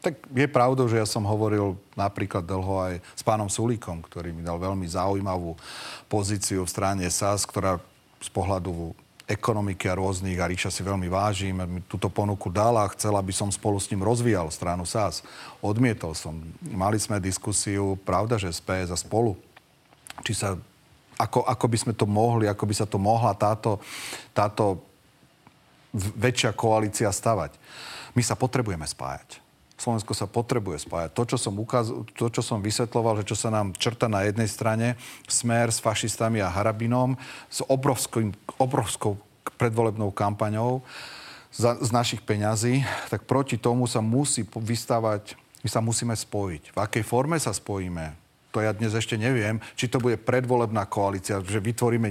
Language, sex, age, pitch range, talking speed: Slovak, male, 40-59, 100-120 Hz, 160 wpm